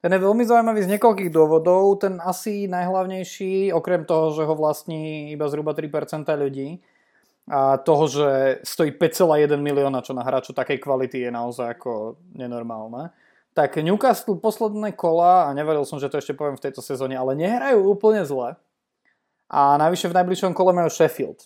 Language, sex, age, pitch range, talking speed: Slovak, male, 20-39, 140-170 Hz, 165 wpm